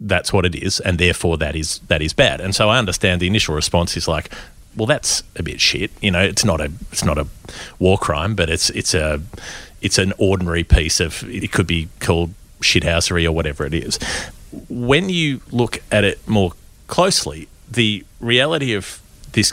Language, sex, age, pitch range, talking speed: English, male, 30-49, 80-105 Hz, 195 wpm